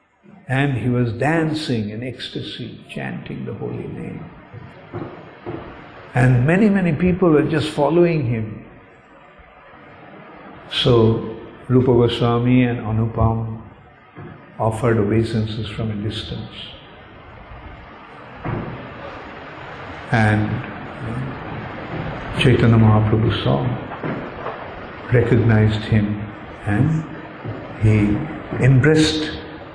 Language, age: English, 50-69